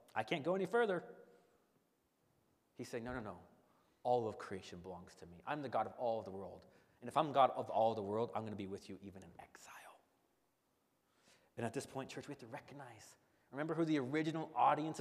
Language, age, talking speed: English, 30-49, 215 wpm